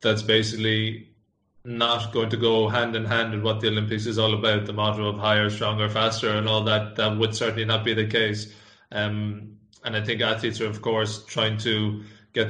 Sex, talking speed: male, 205 wpm